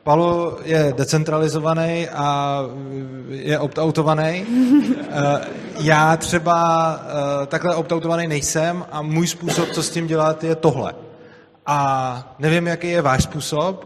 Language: Czech